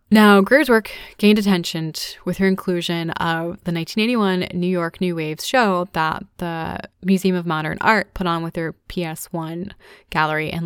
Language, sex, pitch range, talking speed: English, female, 170-195 Hz, 165 wpm